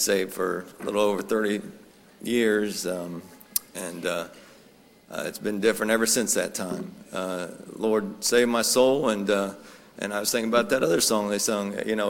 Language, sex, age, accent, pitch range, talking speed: English, male, 40-59, American, 120-155 Hz, 185 wpm